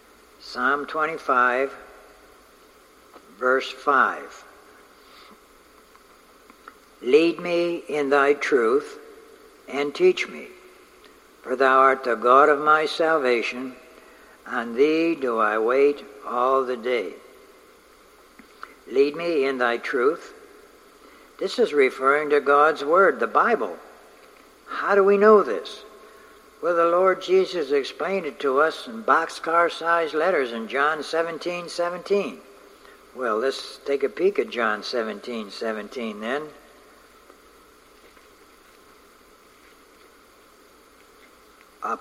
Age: 60-79